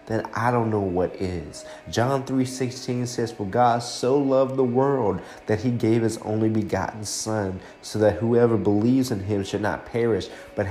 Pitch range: 105-130 Hz